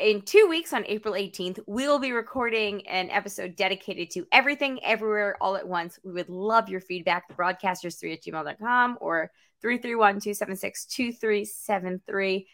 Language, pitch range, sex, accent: English, 190-255 Hz, female, American